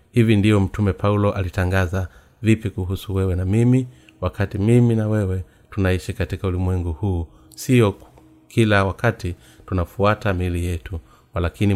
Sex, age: male, 30-49